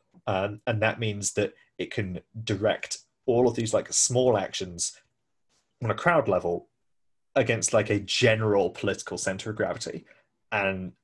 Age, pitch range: 20-39, 100-125 Hz